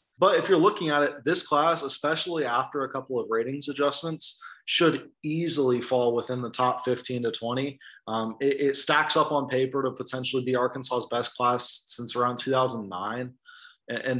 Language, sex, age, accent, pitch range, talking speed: English, male, 20-39, American, 120-145 Hz, 175 wpm